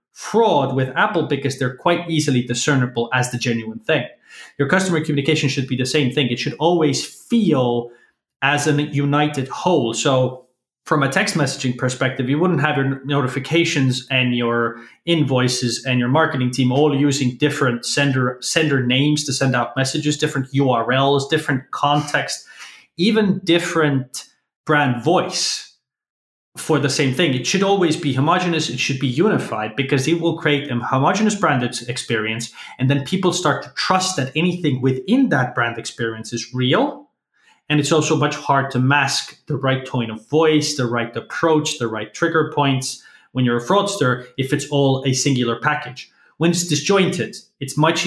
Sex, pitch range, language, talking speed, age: male, 125-155 Hz, English, 165 wpm, 20-39